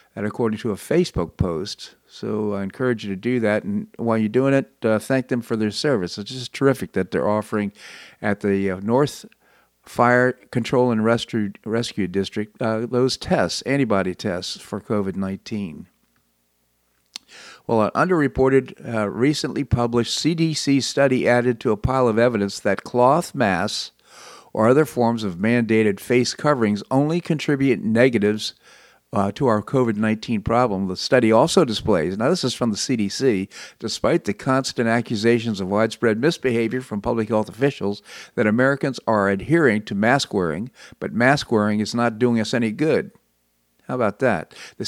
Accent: American